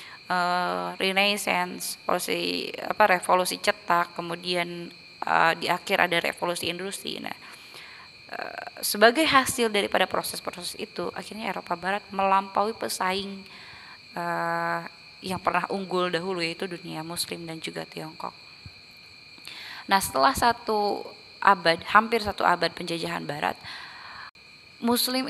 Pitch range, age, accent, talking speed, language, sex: 175-215 Hz, 20-39, native, 105 wpm, Indonesian, female